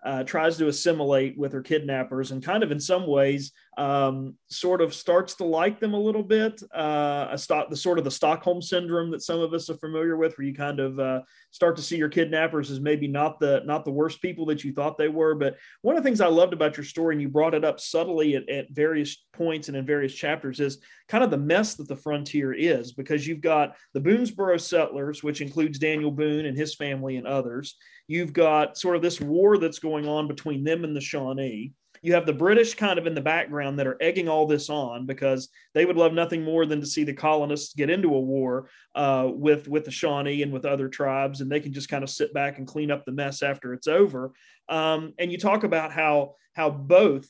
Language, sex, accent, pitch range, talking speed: English, male, American, 140-165 Hz, 230 wpm